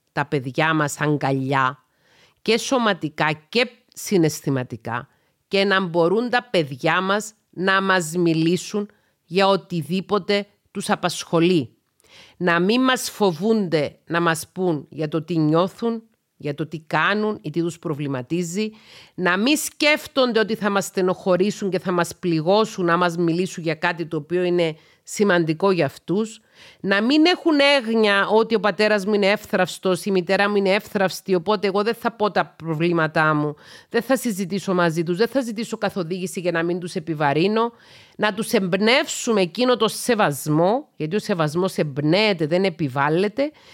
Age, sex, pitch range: 40-59, female, 165-215 Hz